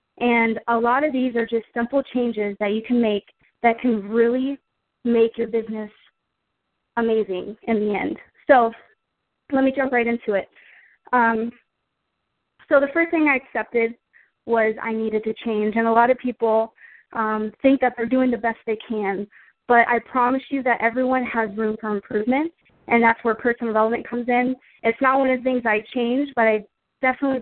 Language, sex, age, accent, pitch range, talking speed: English, female, 20-39, American, 220-260 Hz, 185 wpm